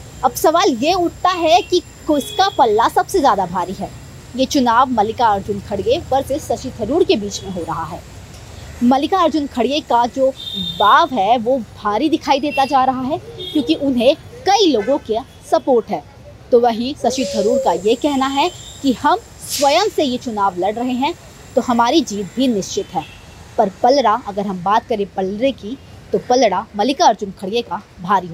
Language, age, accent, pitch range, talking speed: Hindi, 20-39, native, 210-300 Hz, 180 wpm